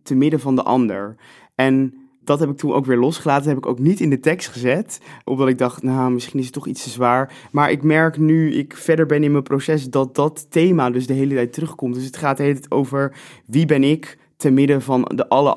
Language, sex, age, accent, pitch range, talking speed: English, male, 20-39, Dutch, 120-140 Hz, 245 wpm